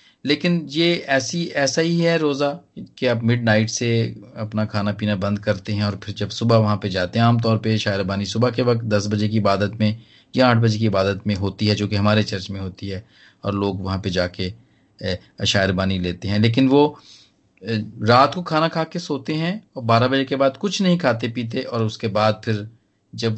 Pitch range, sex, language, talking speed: 105-135 Hz, male, Hindi, 215 wpm